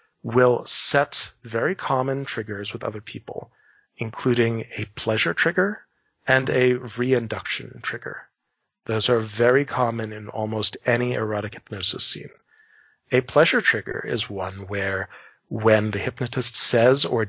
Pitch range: 105-125 Hz